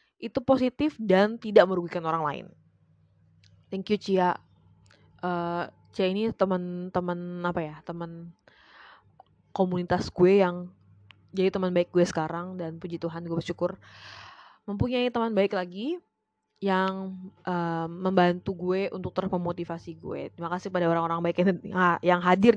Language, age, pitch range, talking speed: Indonesian, 20-39, 170-230 Hz, 130 wpm